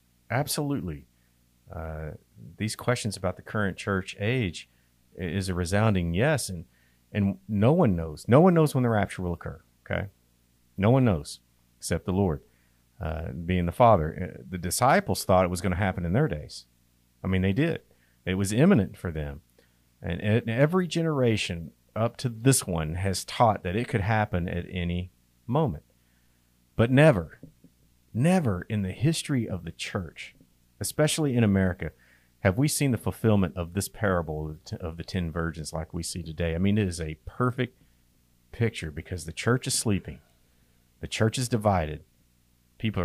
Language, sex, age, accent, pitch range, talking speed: English, male, 50-69, American, 70-110 Hz, 165 wpm